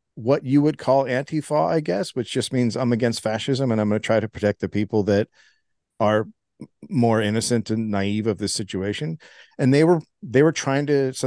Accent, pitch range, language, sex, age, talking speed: American, 100-130 Hz, English, male, 50-69, 210 wpm